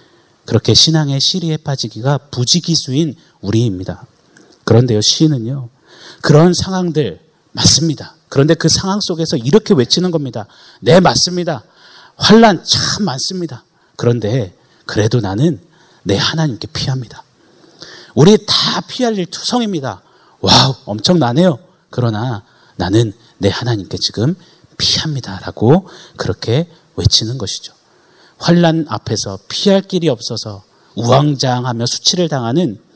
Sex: male